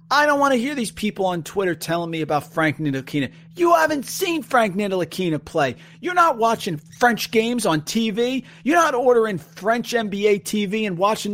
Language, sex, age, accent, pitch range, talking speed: English, male, 40-59, American, 160-235 Hz, 185 wpm